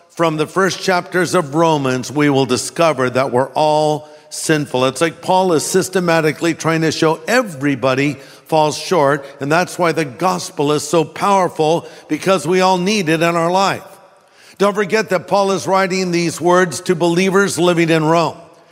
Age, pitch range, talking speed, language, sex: 50-69, 160-195 Hz, 170 wpm, English, male